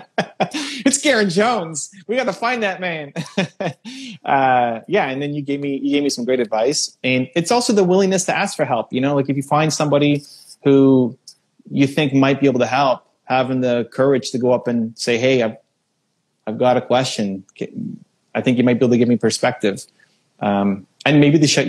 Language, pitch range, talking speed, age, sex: English, 125-160 Hz, 205 wpm, 30-49, male